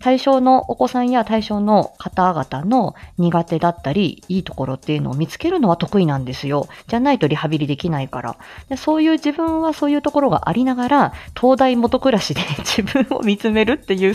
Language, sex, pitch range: Japanese, female, 165-255 Hz